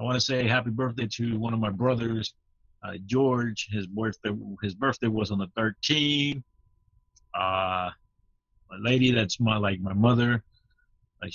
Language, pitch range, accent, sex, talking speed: English, 95-120 Hz, American, male, 160 wpm